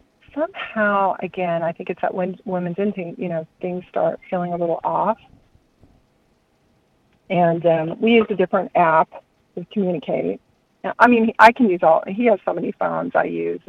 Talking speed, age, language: 165 wpm, 40-59, English